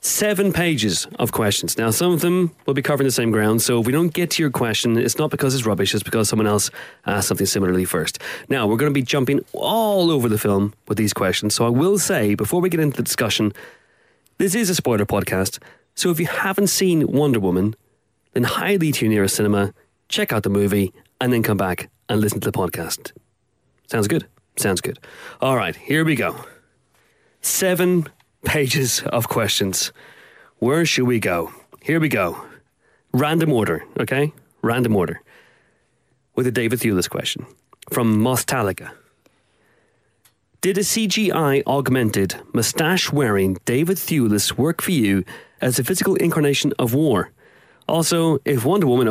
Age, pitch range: 30-49, 105-160 Hz